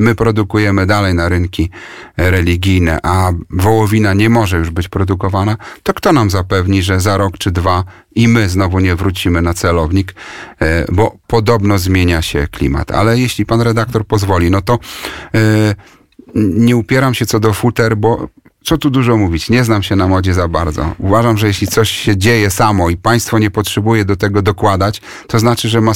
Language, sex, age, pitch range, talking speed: Polish, male, 40-59, 90-115 Hz, 180 wpm